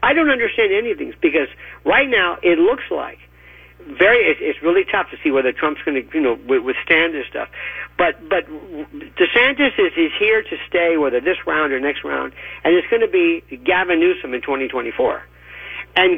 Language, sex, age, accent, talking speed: English, male, 50-69, American, 195 wpm